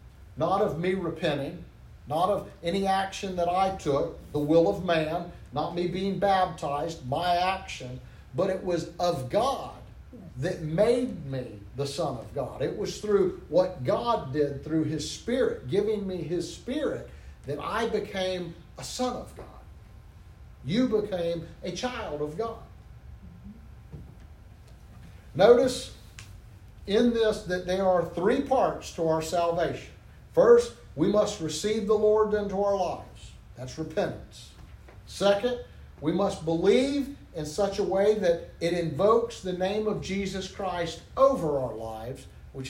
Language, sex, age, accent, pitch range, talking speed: English, male, 50-69, American, 155-210 Hz, 140 wpm